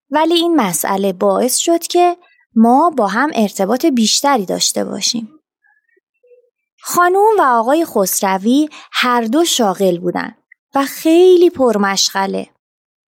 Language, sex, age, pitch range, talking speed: Persian, female, 20-39, 220-335 Hz, 110 wpm